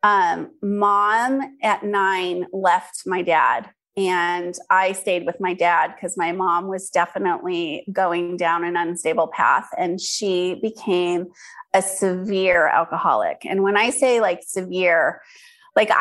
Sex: female